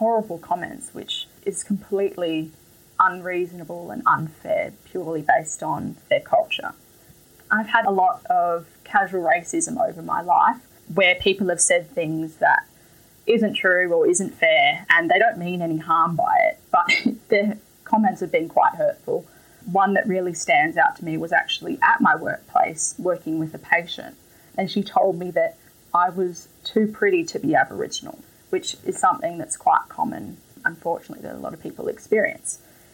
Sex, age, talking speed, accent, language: female, 10-29, 165 wpm, Australian, English